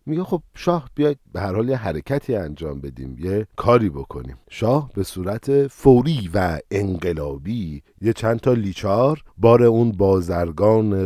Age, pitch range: 50-69, 95-135 Hz